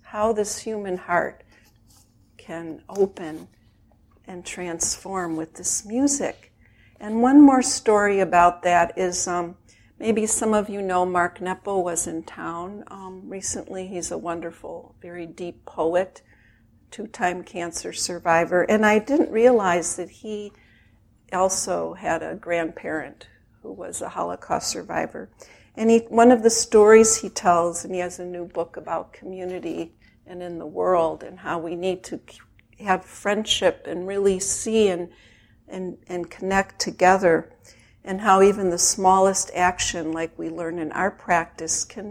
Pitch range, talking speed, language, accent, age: 165-200 Hz, 145 wpm, English, American, 60-79